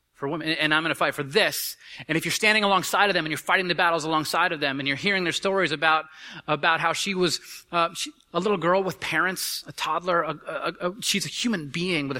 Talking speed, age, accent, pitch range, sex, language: 220 wpm, 30-49, American, 120-170 Hz, male, English